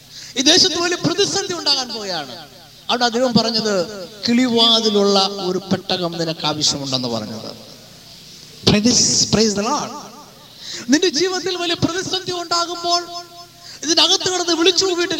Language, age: Malayalam, 20-39